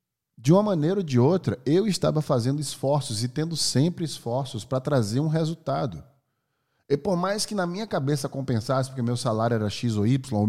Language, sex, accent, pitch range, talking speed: Portuguese, male, Brazilian, 120-160 Hz, 195 wpm